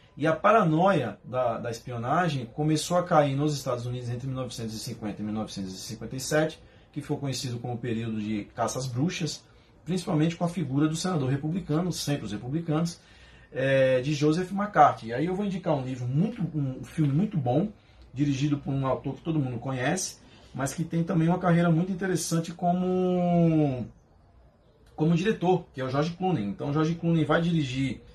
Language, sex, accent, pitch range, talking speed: Portuguese, male, Brazilian, 125-170 Hz, 175 wpm